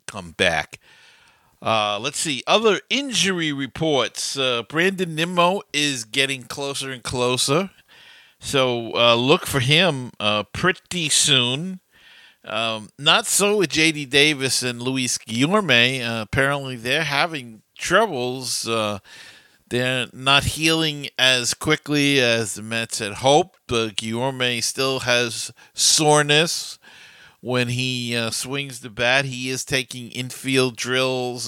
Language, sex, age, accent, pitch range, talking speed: English, male, 50-69, American, 120-145 Hz, 125 wpm